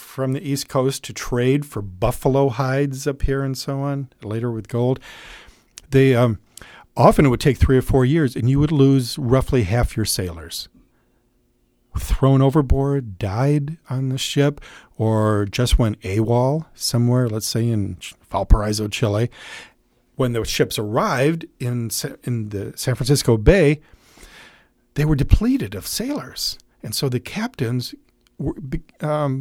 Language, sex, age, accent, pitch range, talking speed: English, male, 50-69, American, 110-140 Hz, 145 wpm